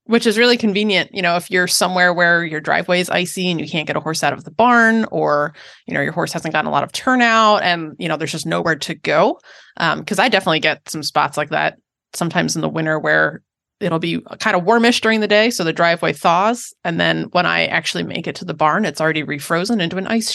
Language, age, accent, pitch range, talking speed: English, 20-39, American, 165-210 Hz, 250 wpm